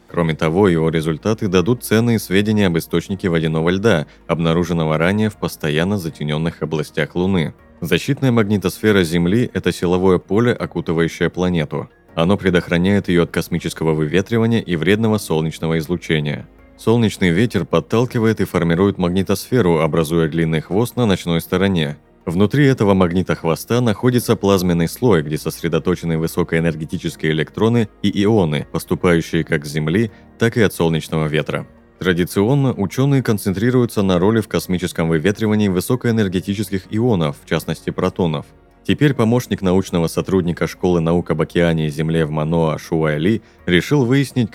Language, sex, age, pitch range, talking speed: Russian, male, 30-49, 80-105 Hz, 130 wpm